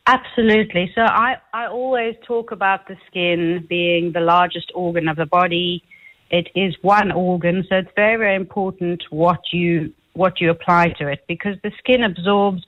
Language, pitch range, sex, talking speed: English, 175-220 Hz, female, 170 wpm